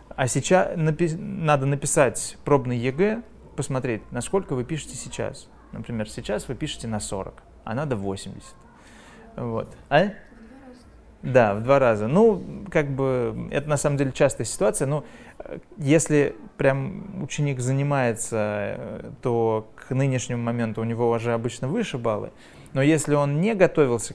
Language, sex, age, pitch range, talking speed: Russian, male, 20-39, 120-160 Hz, 130 wpm